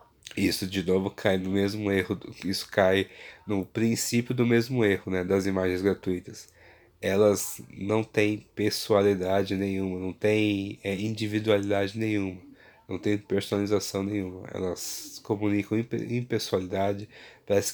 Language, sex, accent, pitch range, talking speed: Portuguese, male, Brazilian, 95-110 Hz, 120 wpm